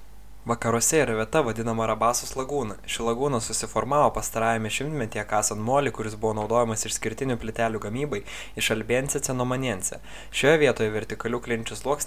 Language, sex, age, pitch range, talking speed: Czech, male, 20-39, 105-125 Hz, 135 wpm